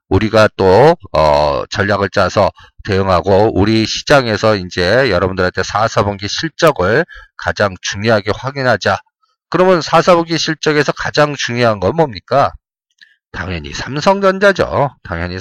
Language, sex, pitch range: Korean, male, 110-160 Hz